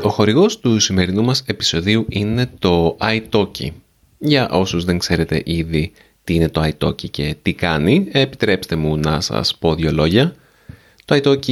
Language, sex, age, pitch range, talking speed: Greek, male, 30-49, 80-105 Hz, 150 wpm